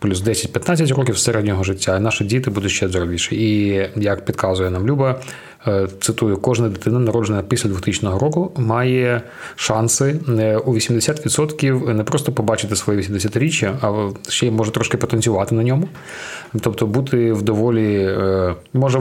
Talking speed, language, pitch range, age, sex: 140 wpm, Ukrainian, 105-125 Hz, 30-49, male